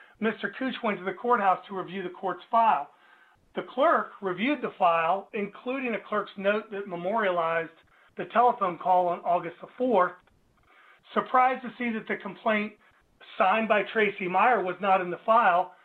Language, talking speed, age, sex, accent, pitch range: English, 165 wpm, 40-59, male, American, 180-215 Hz